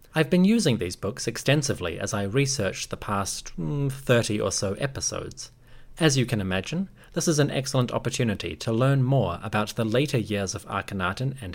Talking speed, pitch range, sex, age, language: 180 wpm, 105-135 Hz, male, 30-49, English